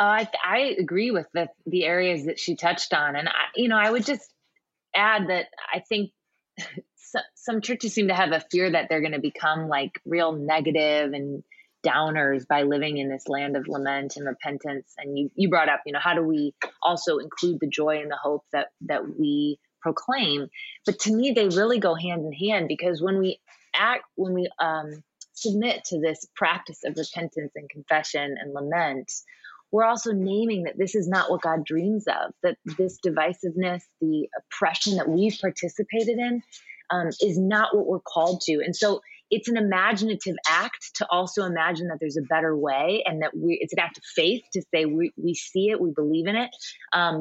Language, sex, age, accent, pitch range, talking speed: English, female, 20-39, American, 155-210 Hz, 200 wpm